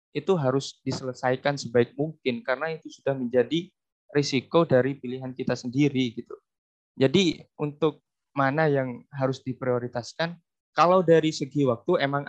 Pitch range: 130-150 Hz